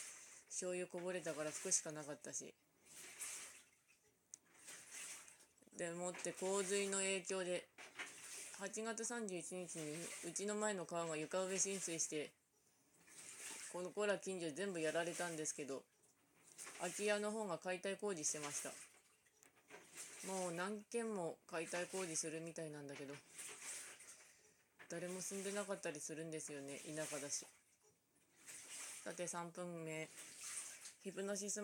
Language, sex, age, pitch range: Japanese, female, 20-39, 160-190 Hz